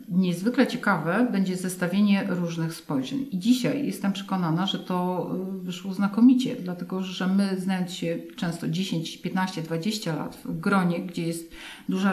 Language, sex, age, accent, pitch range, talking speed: Polish, female, 50-69, native, 180-230 Hz, 145 wpm